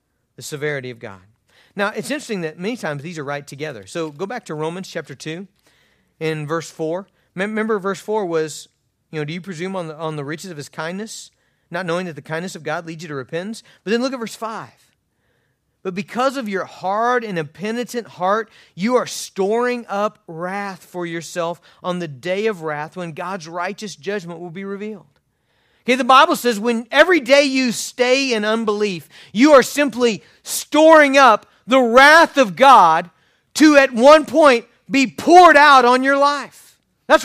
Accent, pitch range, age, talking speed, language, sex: American, 165-270 Hz, 40-59, 185 wpm, English, male